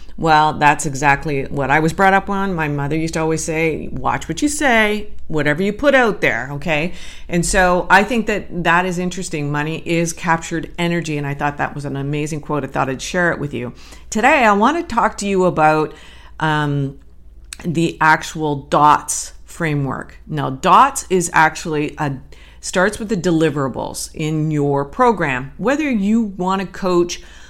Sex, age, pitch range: female, 50-69, 145-180 Hz